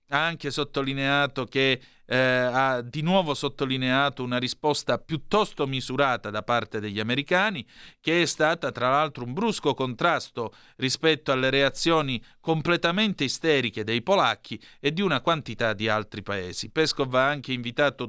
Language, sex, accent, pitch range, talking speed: Italian, male, native, 120-155 Hz, 145 wpm